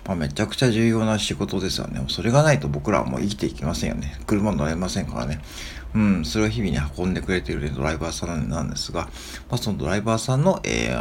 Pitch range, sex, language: 75-110 Hz, male, Japanese